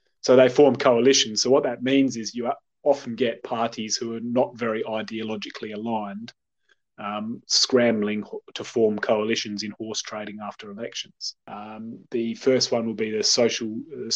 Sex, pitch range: male, 110-125 Hz